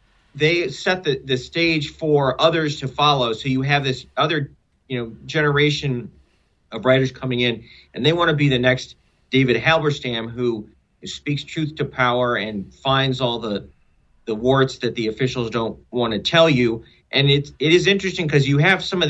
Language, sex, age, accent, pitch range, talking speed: English, male, 40-59, American, 120-145 Hz, 185 wpm